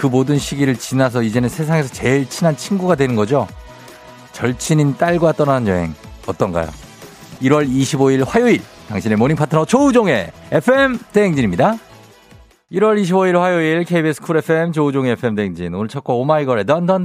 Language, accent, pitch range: Korean, native, 105-150 Hz